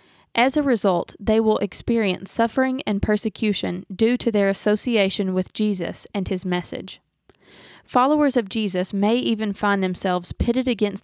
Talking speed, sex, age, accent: 145 wpm, female, 20-39, American